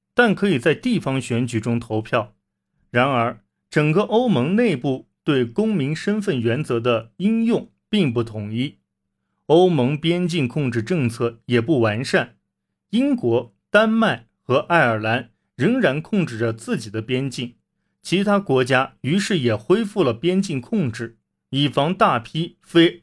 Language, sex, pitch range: Chinese, male, 115-185 Hz